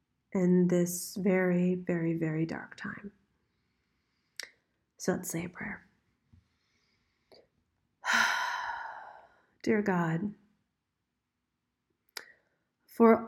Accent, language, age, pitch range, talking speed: American, English, 40-59, 180-215 Hz, 70 wpm